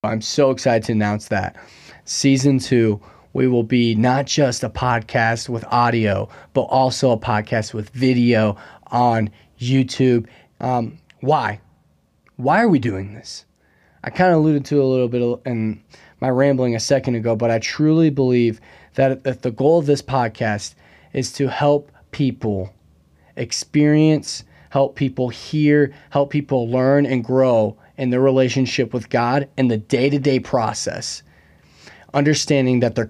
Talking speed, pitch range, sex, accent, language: 150 wpm, 110-135 Hz, male, American, English